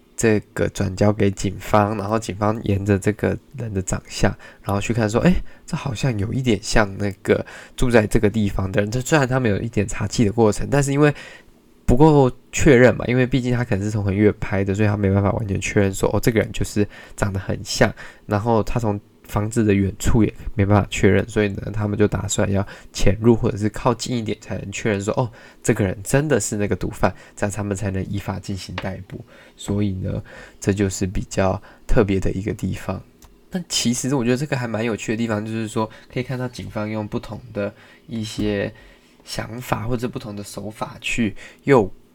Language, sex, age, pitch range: Chinese, male, 20-39, 100-120 Hz